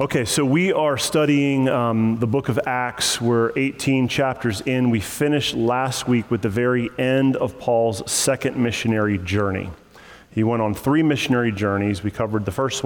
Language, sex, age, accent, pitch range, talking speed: English, male, 30-49, American, 115-145 Hz, 175 wpm